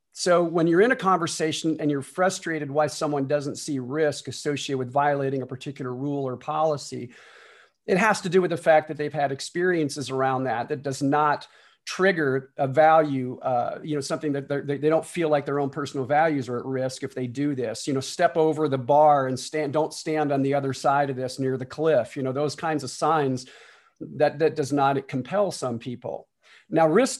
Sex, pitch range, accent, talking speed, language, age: male, 135-160 Hz, American, 210 wpm, English, 40-59